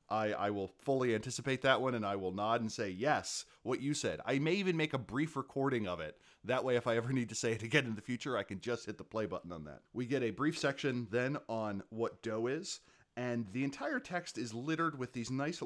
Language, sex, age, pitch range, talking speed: English, male, 30-49, 105-135 Hz, 255 wpm